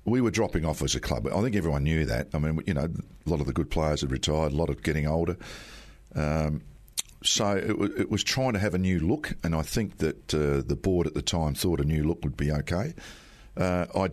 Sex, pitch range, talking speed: male, 75-90 Hz, 255 wpm